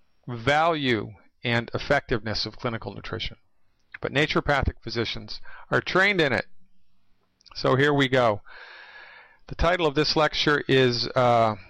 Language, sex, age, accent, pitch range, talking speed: English, male, 40-59, American, 115-145 Hz, 125 wpm